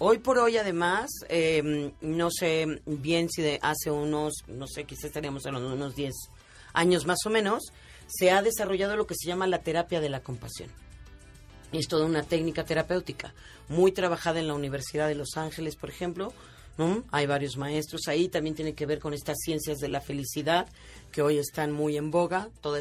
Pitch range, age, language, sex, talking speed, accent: 150-185 Hz, 40-59, Spanish, female, 190 wpm, Mexican